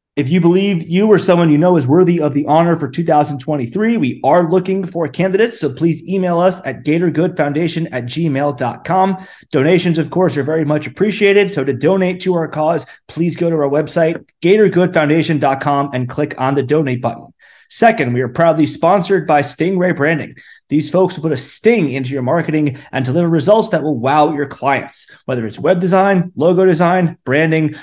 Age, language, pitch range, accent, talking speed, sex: 30-49, English, 140-175 Hz, American, 185 wpm, male